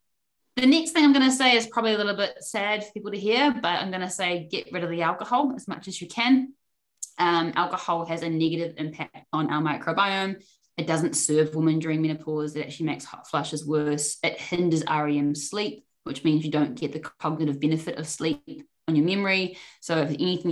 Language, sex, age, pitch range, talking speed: English, female, 10-29, 145-175 Hz, 215 wpm